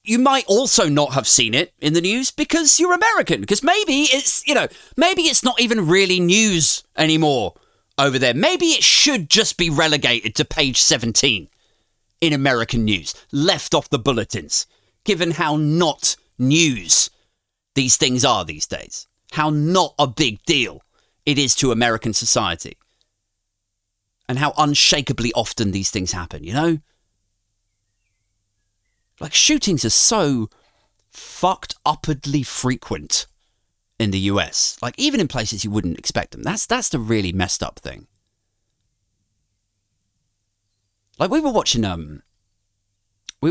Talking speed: 140 wpm